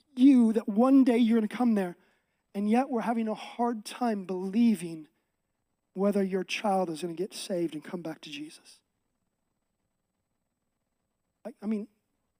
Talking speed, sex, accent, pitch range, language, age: 160 wpm, male, American, 200-270 Hz, English, 30-49